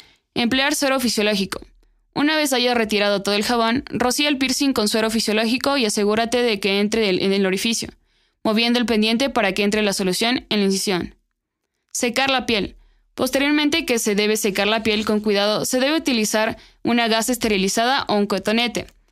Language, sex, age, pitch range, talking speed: Spanish, female, 20-39, 200-245 Hz, 175 wpm